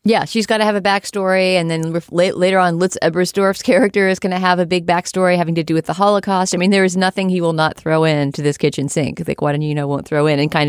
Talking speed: 285 wpm